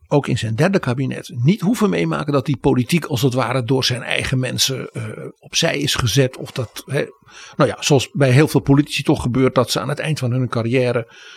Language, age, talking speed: Dutch, 60-79, 220 wpm